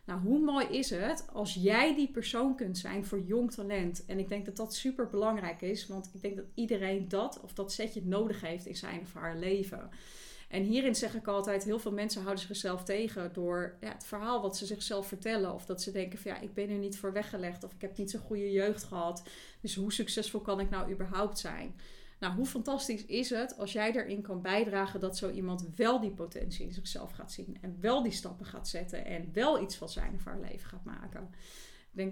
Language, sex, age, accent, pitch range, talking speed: Dutch, female, 30-49, Dutch, 190-220 Hz, 230 wpm